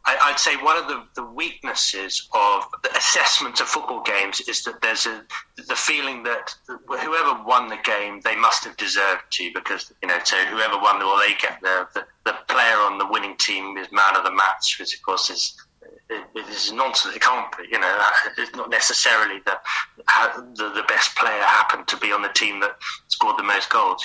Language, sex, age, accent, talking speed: English, male, 30-49, British, 205 wpm